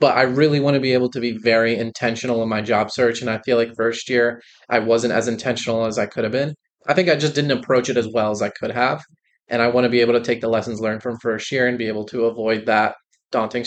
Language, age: English, 20-39